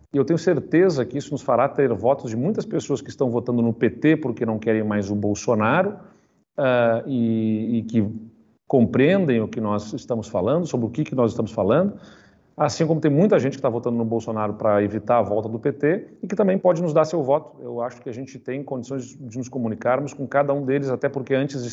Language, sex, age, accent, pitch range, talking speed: Portuguese, male, 40-59, Brazilian, 115-140 Hz, 225 wpm